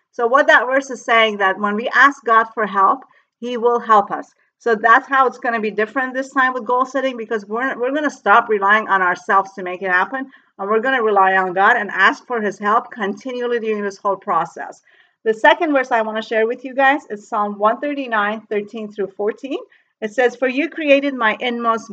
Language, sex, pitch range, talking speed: English, female, 205-265 Hz, 225 wpm